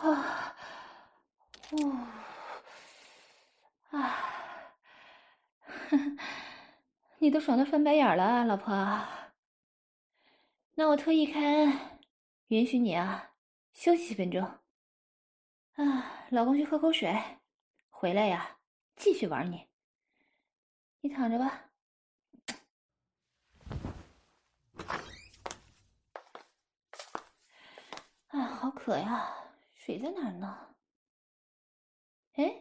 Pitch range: 230-310 Hz